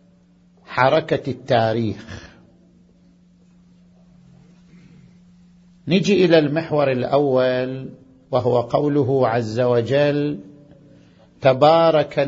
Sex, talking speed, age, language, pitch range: male, 55 wpm, 50-69, Arabic, 130-170 Hz